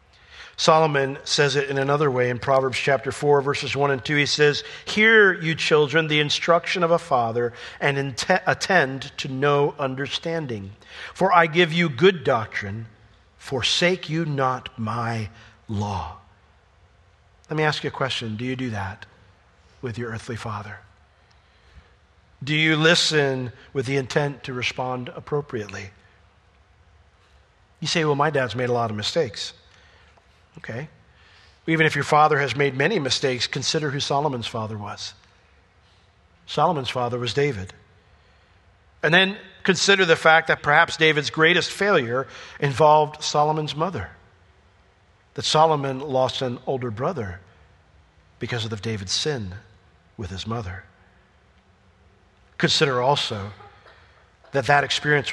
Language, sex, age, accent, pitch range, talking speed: English, male, 50-69, American, 95-145 Hz, 130 wpm